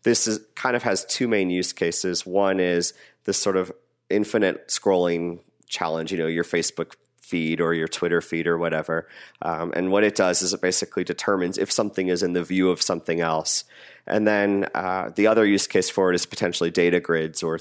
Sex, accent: male, American